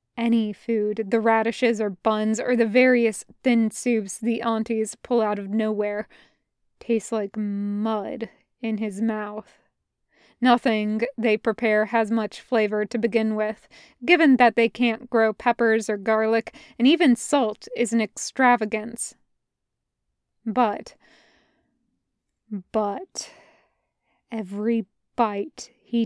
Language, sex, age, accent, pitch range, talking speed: English, female, 20-39, American, 215-240 Hz, 115 wpm